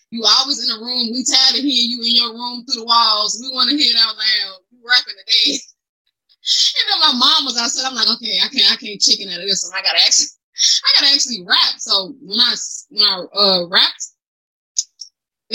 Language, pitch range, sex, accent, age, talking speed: English, 200-255 Hz, female, American, 20-39, 225 wpm